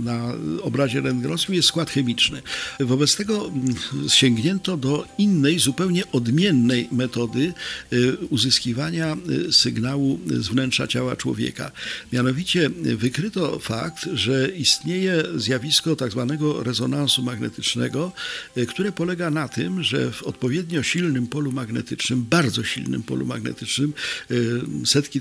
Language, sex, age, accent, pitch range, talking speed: Polish, male, 50-69, native, 125-165 Hz, 105 wpm